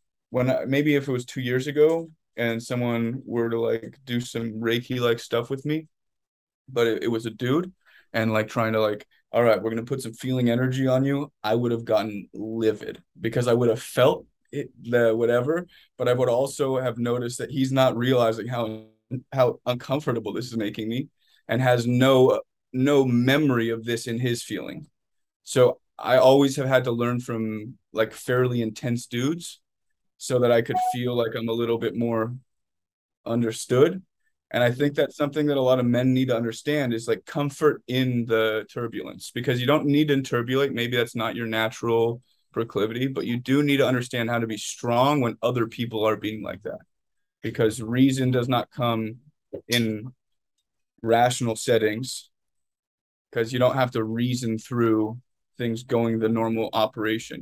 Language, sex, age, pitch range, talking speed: English, male, 20-39, 115-130 Hz, 180 wpm